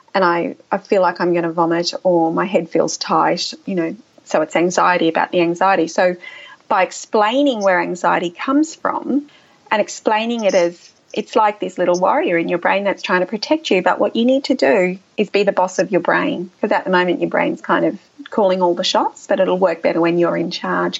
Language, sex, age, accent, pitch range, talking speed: English, female, 30-49, Australian, 180-275 Hz, 225 wpm